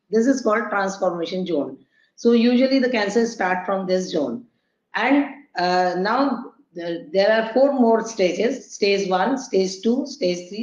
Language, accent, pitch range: Hindi, native, 190-255 Hz